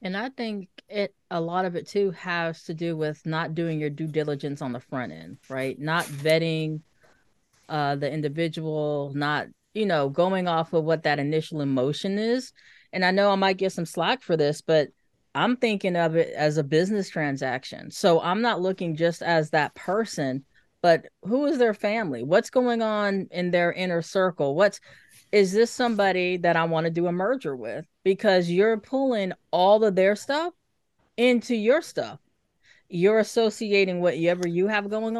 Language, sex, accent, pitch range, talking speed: English, female, American, 160-205 Hz, 180 wpm